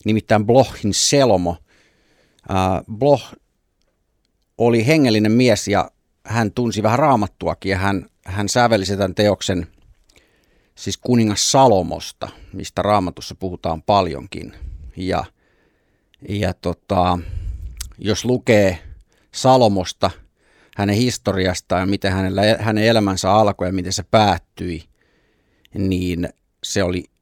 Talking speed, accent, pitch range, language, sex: 100 wpm, native, 90-110 Hz, Finnish, male